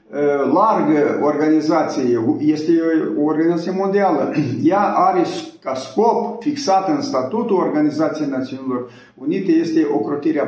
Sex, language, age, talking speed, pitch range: male, Romanian, 50-69, 105 wpm, 155-230 Hz